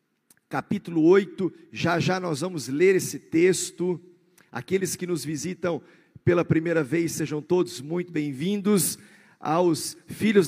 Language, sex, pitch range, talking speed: Portuguese, male, 155-185 Hz, 125 wpm